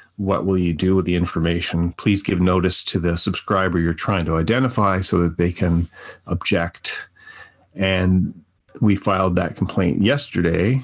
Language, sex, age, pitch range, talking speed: English, male, 40-59, 85-100 Hz, 155 wpm